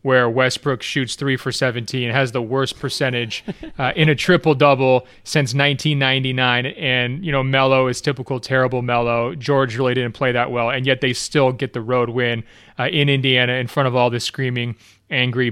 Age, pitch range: 30-49, 125-145 Hz